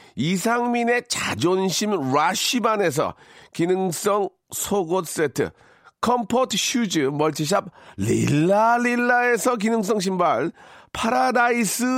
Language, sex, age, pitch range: Korean, male, 40-59, 185-240 Hz